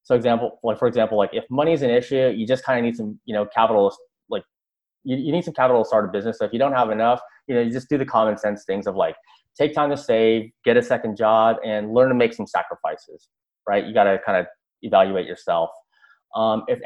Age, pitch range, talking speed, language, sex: 30-49, 110-140 Hz, 255 wpm, English, male